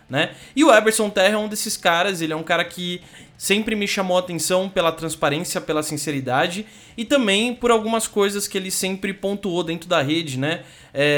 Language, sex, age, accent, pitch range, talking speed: Portuguese, male, 20-39, Brazilian, 160-220 Hz, 195 wpm